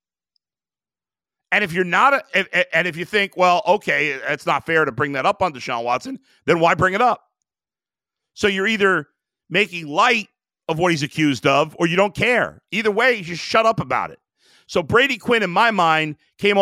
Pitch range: 155-215 Hz